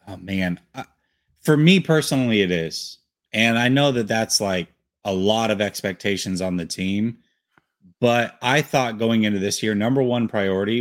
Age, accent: 30-49, American